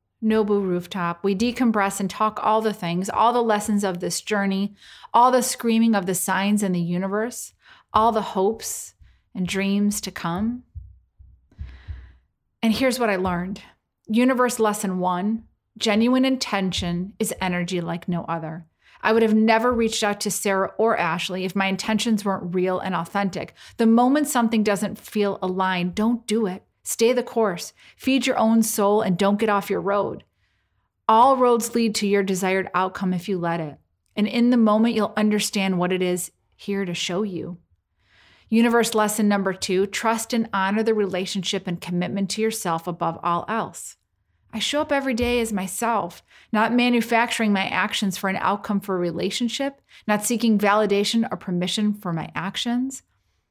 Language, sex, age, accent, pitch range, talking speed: English, female, 30-49, American, 185-225 Hz, 170 wpm